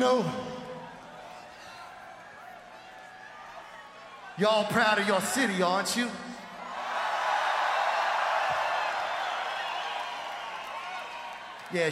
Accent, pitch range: American, 190-270 Hz